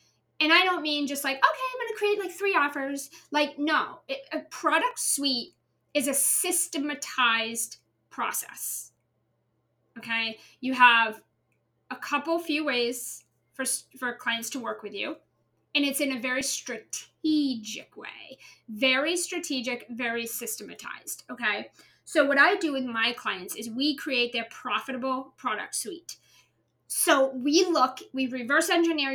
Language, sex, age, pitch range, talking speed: English, female, 30-49, 235-290 Hz, 140 wpm